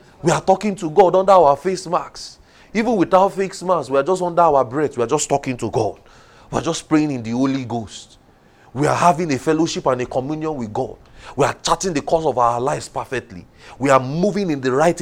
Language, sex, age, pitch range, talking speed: English, male, 30-49, 135-185 Hz, 230 wpm